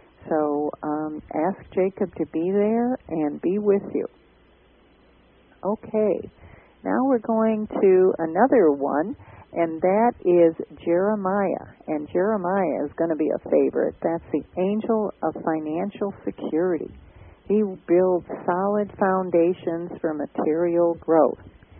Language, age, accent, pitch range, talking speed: English, 50-69, American, 155-195 Hz, 120 wpm